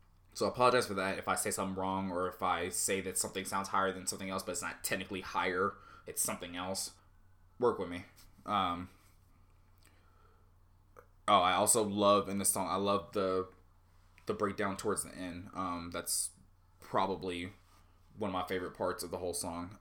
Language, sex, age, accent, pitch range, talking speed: English, male, 20-39, American, 90-95 Hz, 180 wpm